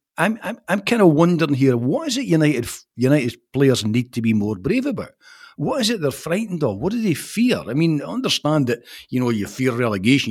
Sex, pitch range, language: male, 115-165 Hz, English